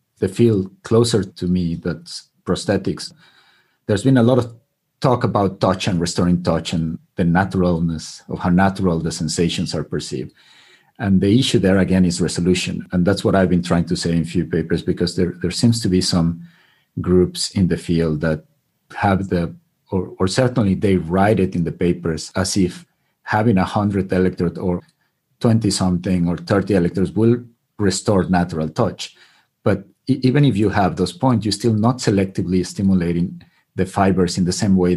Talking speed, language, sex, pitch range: 180 wpm, English, male, 85-105 Hz